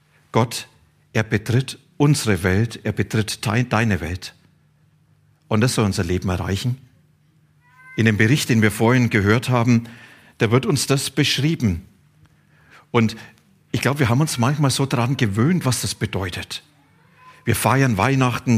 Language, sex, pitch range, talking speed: German, male, 110-150 Hz, 140 wpm